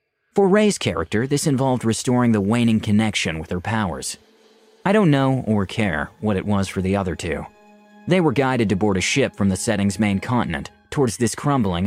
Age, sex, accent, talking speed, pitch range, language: 30-49, male, American, 195 wpm, 95-125 Hz, English